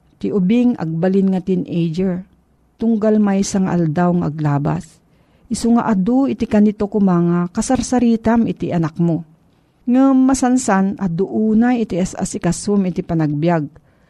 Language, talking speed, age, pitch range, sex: Filipino, 115 wpm, 50-69, 170-225 Hz, female